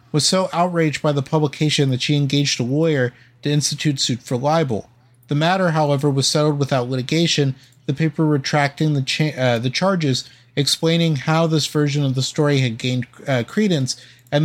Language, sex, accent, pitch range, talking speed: English, male, American, 125-155 Hz, 175 wpm